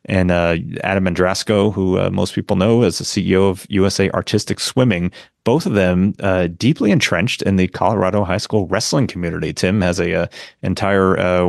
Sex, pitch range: male, 90-100 Hz